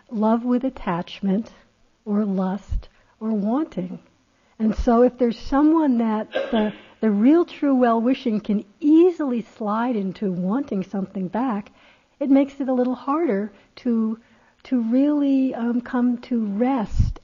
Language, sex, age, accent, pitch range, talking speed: English, female, 60-79, American, 190-240 Hz, 130 wpm